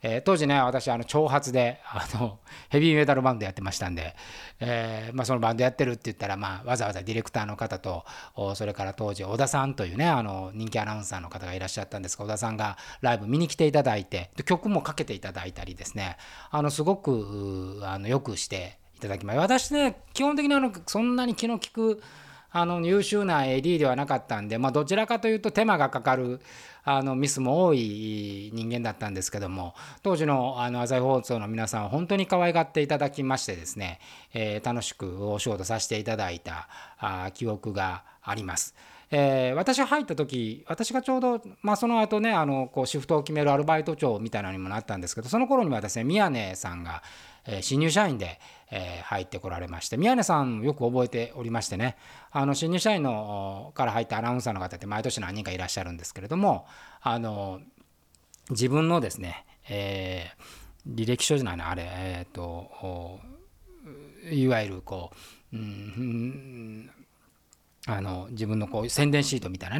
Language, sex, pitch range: Japanese, male, 100-150 Hz